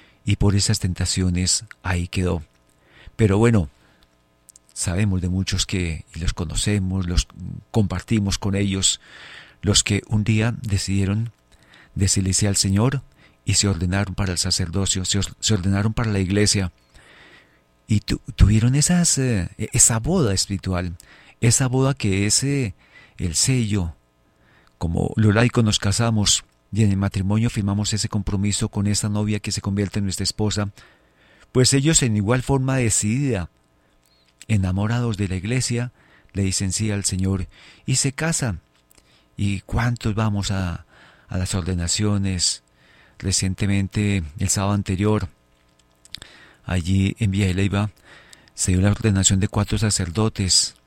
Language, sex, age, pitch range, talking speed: Spanish, male, 40-59, 90-110 Hz, 130 wpm